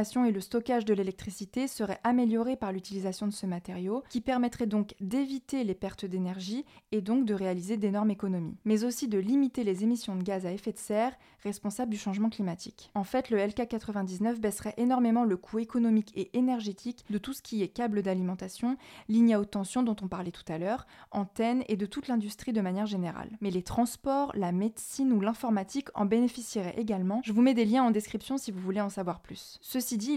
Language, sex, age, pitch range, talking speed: French, female, 20-39, 195-240 Hz, 205 wpm